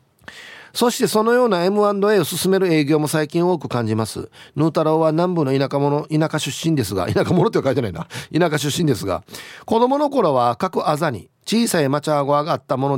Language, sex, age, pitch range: Japanese, male, 40-59, 125-175 Hz